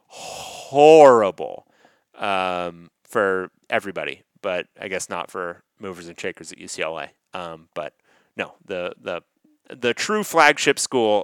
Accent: American